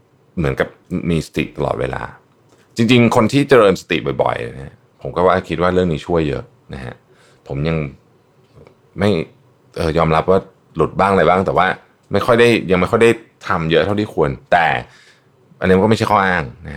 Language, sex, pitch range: Thai, male, 75-100 Hz